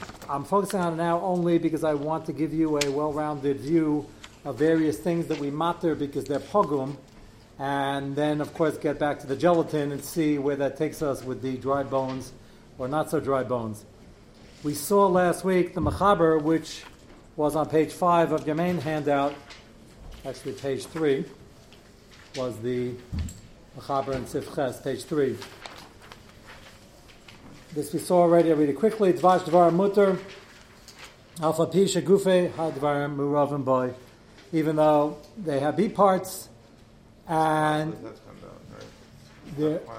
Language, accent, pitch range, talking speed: English, American, 135-165 Hz, 150 wpm